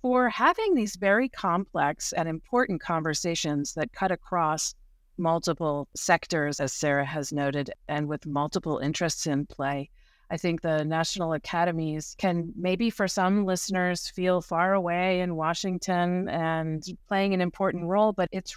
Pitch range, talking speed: 155-190 Hz, 145 wpm